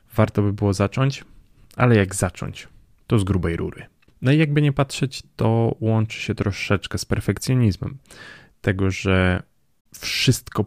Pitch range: 95-120 Hz